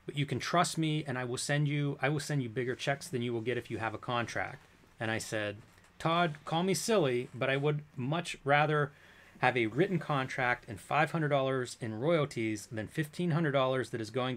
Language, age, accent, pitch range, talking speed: English, 30-49, American, 115-145 Hz, 210 wpm